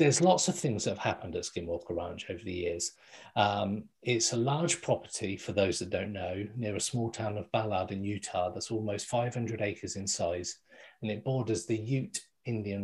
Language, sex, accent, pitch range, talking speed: English, male, British, 100-115 Hz, 200 wpm